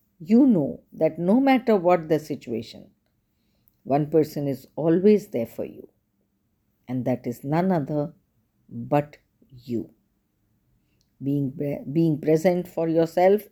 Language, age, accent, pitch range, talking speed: English, 50-69, Indian, 125-185 Hz, 120 wpm